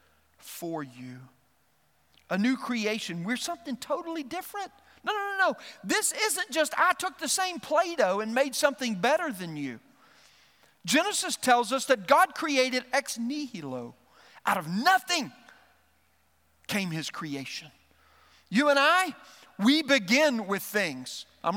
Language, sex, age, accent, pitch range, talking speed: English, male, 50-69, American, 155-255 Hz, 135 wpm